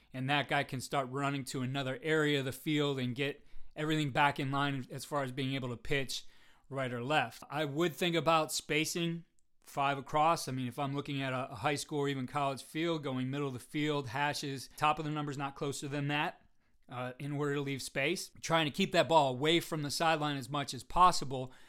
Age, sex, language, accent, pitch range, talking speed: 30-49, male, English, American, 140-160 Hz, 225 wpm